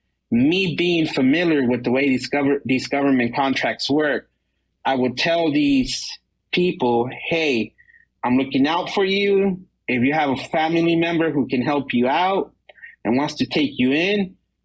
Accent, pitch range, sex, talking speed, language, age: American, 130-165 Hz, male, 160 wpm, English, 30-49